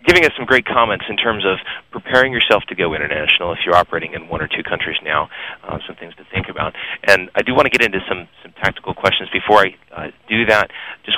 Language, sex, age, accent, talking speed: English, male, 30-49, American, 240 wpm